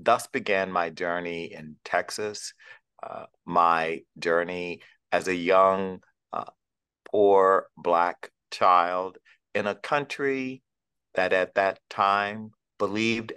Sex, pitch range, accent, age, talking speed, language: male, 90-105 Hz, American, 50-69, 110 wpm, English